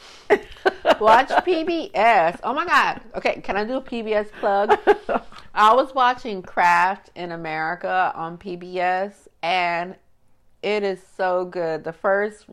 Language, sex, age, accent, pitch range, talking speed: English, female, 40-59, American, 145-185 Hz, 130 wpm